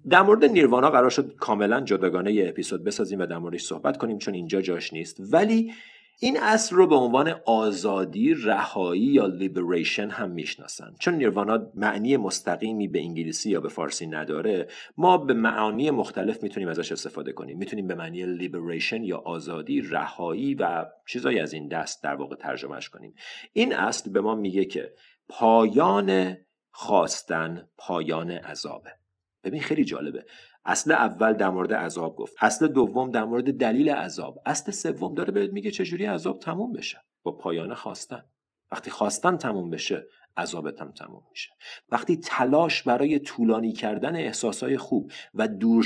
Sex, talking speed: male, 155 wpm